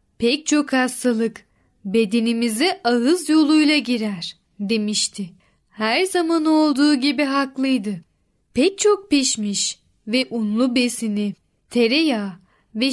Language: Turkish